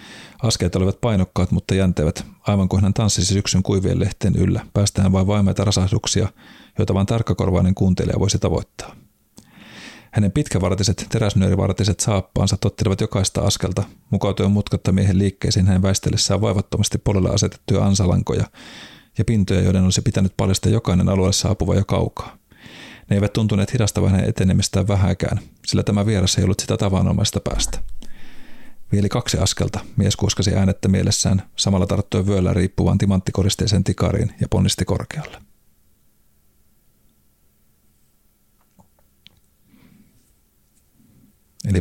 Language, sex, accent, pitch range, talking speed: Finnish, male, native, 95-105 Hz, 115 wpm